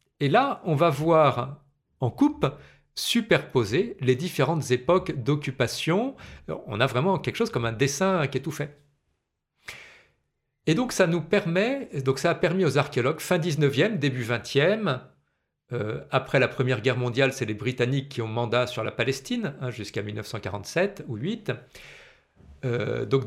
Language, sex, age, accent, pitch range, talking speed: French, male, 40-59, French, 125-170 Hz, 160 wpm